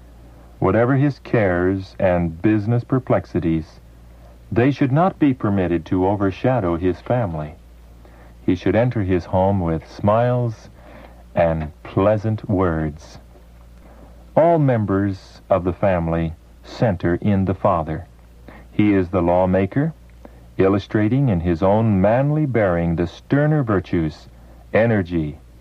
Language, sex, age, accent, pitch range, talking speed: English, male, 50-69, American, 70-105 Hz, 110 wpm